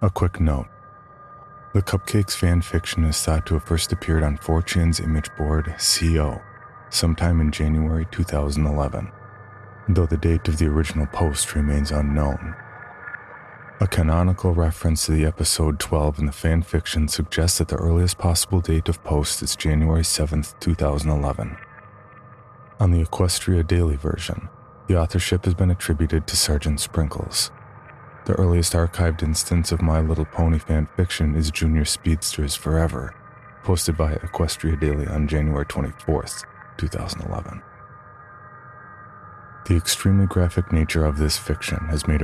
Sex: male